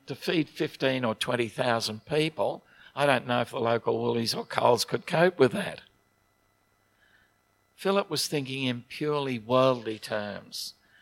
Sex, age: male, 60-79